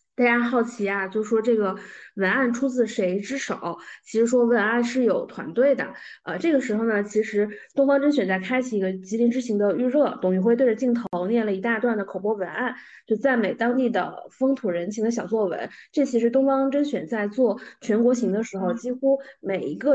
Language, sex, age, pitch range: Chinese, female, 20-39, 205-260 Hz